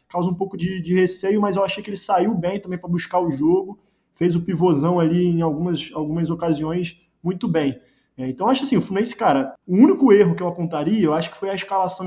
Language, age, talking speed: Portuguese, 20-39, 235 wpm